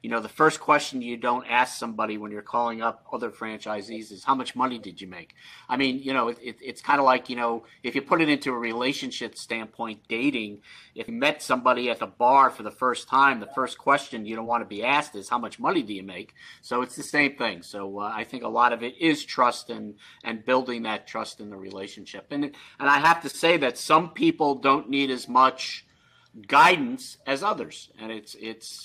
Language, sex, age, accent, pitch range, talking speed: English, male, 50-69, American, 110-150 Hz, 235 wpm